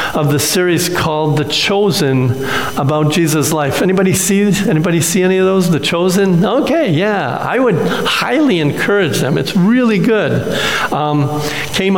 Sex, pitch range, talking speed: male, 150-185 Hz, 150 wpm